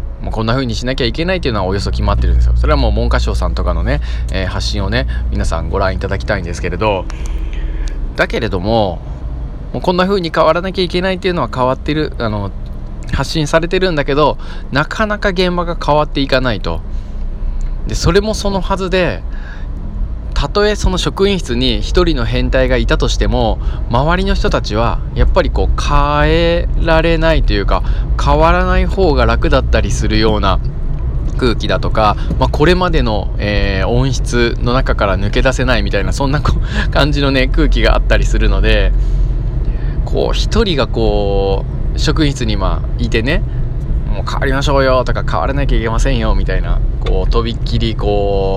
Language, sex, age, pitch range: Japanese, male, 20-39, 95-140 Hz